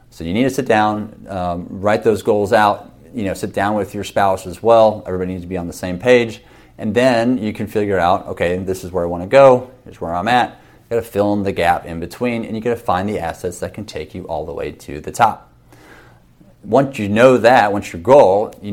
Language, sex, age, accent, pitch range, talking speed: English, male, 30-49, American, 90-110 Hz, 245 wpm